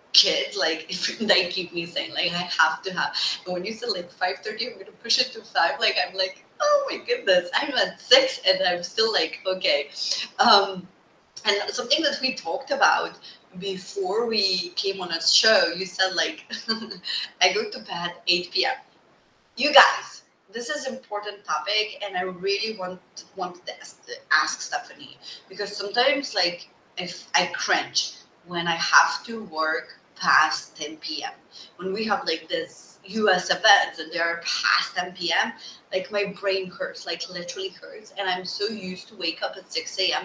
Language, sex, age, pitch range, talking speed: English, female, 30-49, 175-230 Hz, 180 wpm